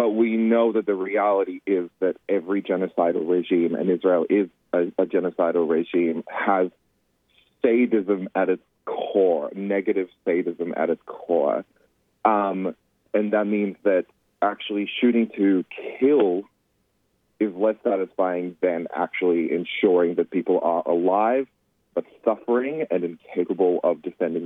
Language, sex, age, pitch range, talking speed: English, male, 30-49, 90-110 Hz, 130 wpm